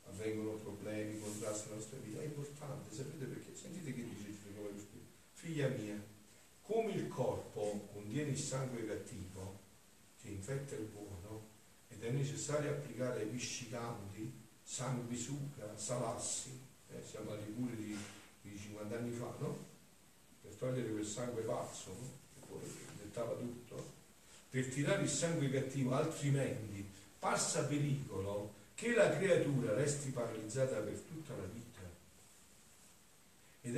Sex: male